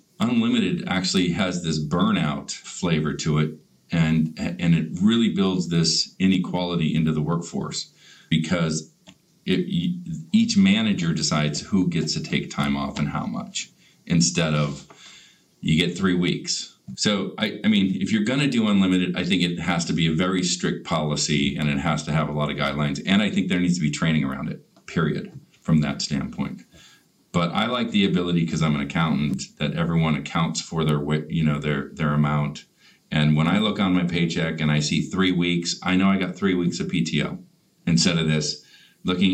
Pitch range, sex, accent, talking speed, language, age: 80-95 Hz, male, American, 190 wpm, English, 40-59